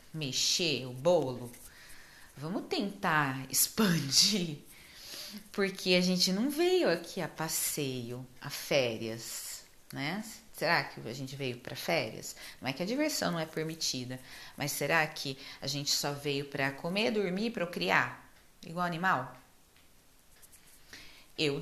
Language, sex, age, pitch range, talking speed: Portuguese, female, 40-59, 145-195 Hz, 130 wpm